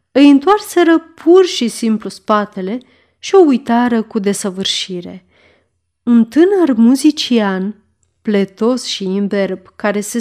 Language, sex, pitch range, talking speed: Romanian, female, 195-265 Hz, 110 wpm